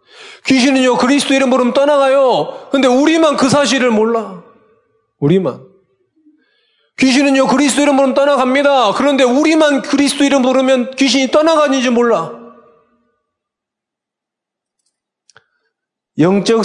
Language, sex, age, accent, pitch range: Korean, male, 40-59, native, 165-275 Hz